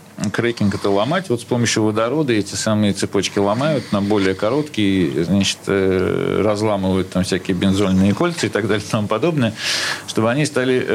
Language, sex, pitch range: Russian, male, 100-135 Hz